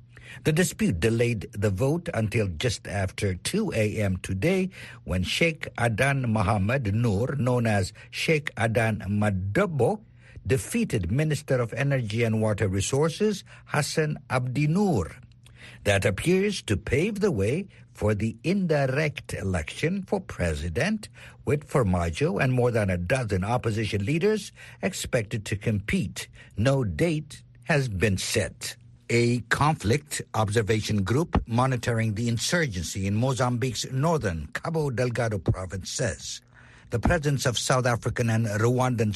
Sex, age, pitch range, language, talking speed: male, 60-79, 110-150 Hz, English, 125 wpm